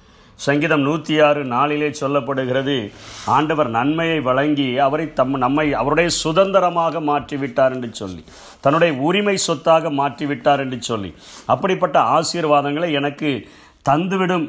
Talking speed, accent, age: 110 wpm, native, 50-69